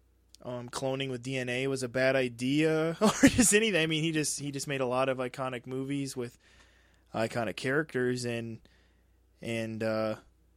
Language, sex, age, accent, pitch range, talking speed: English, male, 20-39, American, 100-145 Hz, 165 wpm